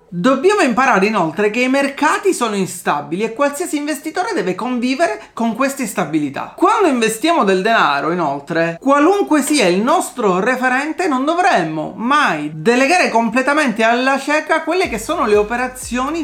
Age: 30-49